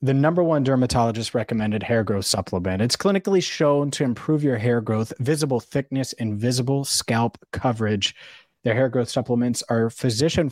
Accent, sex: American, male